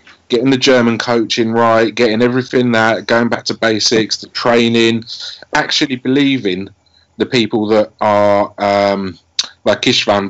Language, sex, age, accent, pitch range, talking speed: English, male, 30-49, British, 95-115 Hz, 135 wpm